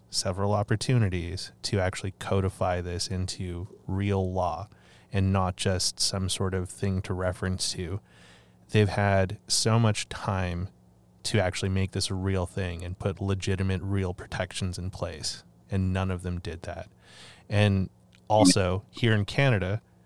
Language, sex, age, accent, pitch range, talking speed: English, male, 30-49, American, 90-100 Hz, 145 wpm